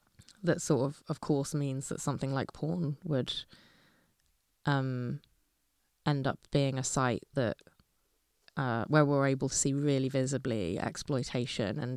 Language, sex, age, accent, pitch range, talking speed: English, female, 20-39, British, 130-155 Hz, 140 wpm